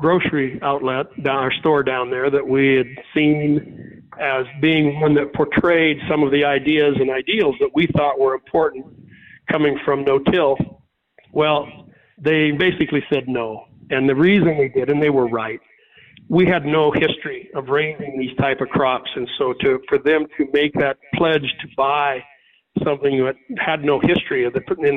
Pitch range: 140-165 Hz